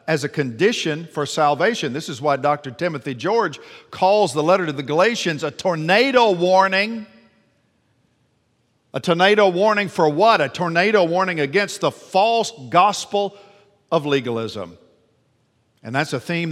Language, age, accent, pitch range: English, 50-69, American, 135-155 Hz